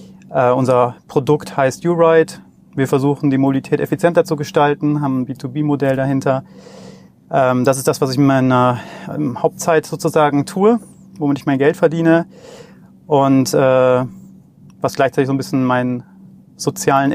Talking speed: 150 wpm